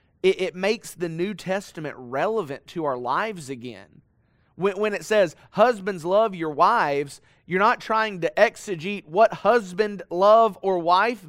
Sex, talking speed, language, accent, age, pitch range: male, 145 wpm, English, American, 30-49, 150-210 Hz